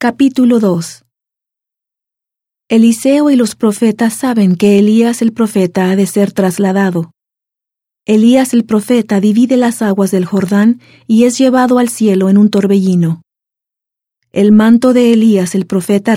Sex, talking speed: female, 135 wpm